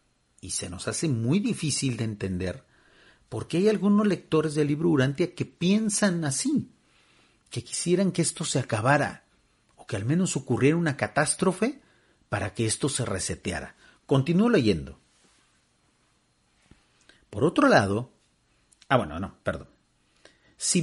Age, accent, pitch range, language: 50-69, Mexican, 120-190 Hz, Spanish